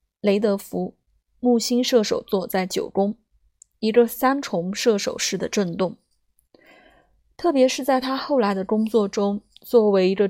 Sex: female